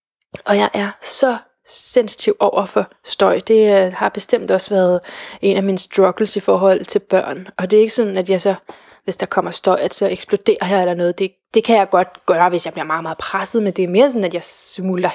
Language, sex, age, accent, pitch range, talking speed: Danish, female, 20-39, native, 190-230 Hz, 235 wpm